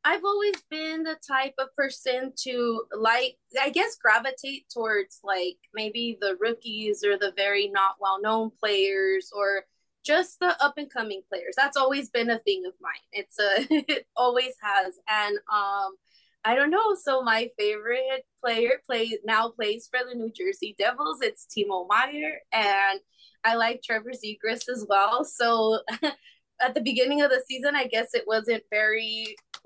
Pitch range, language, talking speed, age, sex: 215-305 Hz, English, 165 wpm, 20-39, female